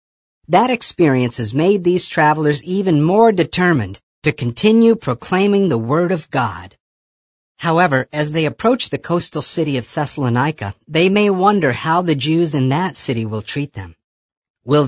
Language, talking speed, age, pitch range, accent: English, 155 wpm, 50-69, 120-180 Hz, American